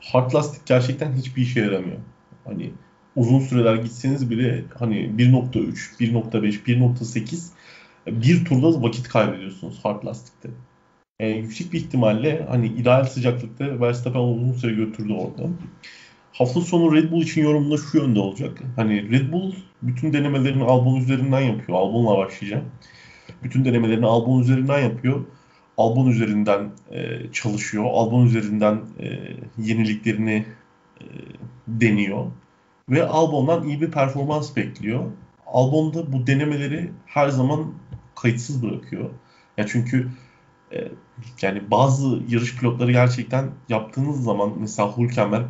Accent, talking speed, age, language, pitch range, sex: native, 120 wpm, 40-59, Turkish, 115-140 Hz, male